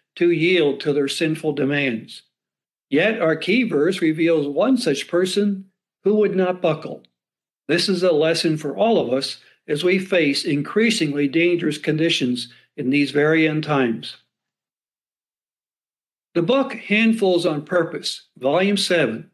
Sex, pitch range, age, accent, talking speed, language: male, 145-180 Hz, 60-79, American, 135 wpm, English